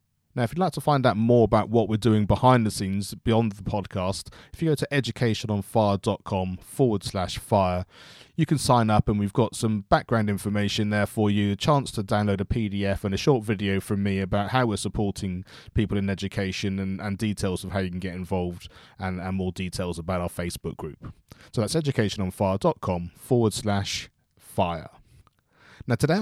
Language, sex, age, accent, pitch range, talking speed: English, male, 20-39, British, 95-115 Hz, 190 wpm